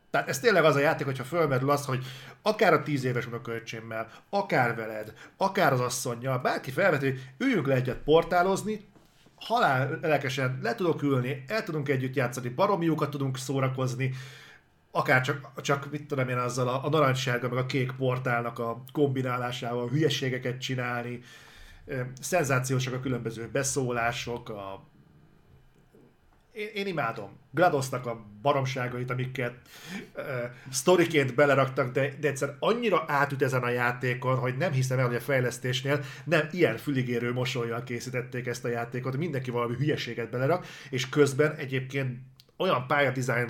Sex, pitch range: male, 125-145 Hz